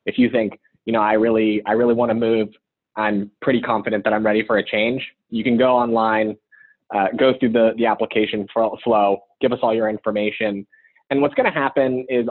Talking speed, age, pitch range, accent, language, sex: 210 wpm, 20-39, 110-130 Hz, American, English, male